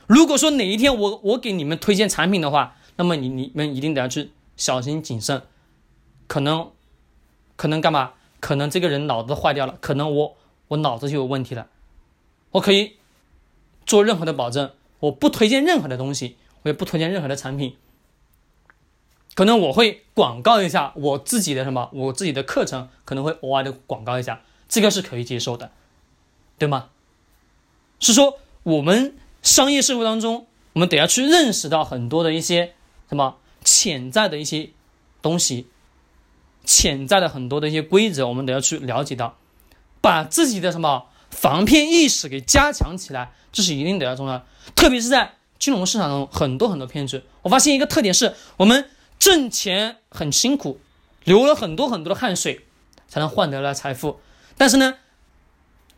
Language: Chinese